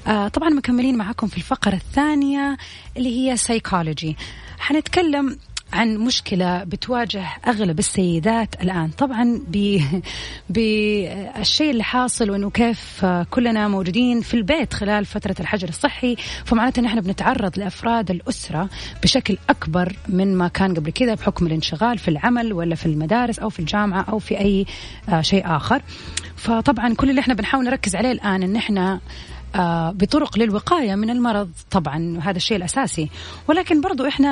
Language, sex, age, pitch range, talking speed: Arabic, female, 30-49, 185-240 Hz, 140 wpm